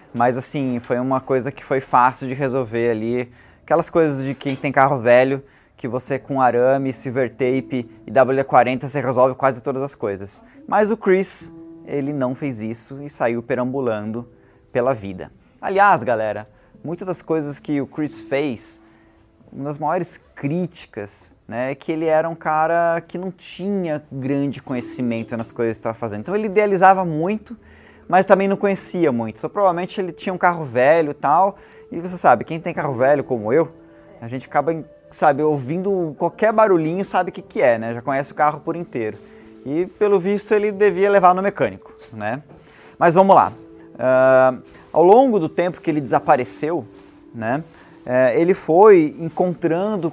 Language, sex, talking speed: Portuguese, male, 175 wpm